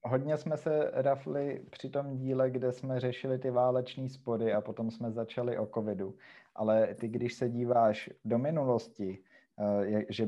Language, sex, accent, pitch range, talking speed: Czech, male, native, 105-115 Hz, 160 wpm